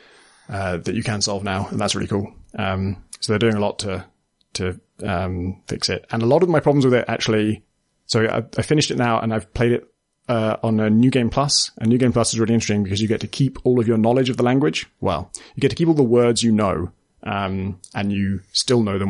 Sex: male